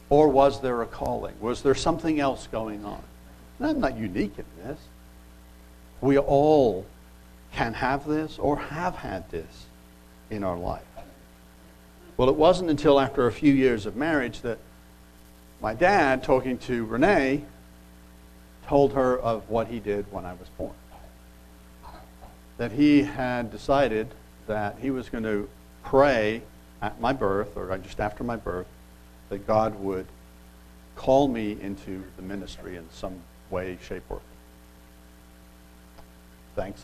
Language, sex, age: English, male, 60-79